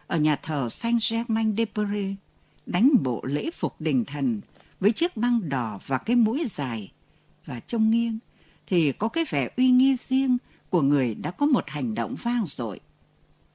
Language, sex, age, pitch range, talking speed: Vietnamese, female, 60-79, 150-245 Hz, 175 wpm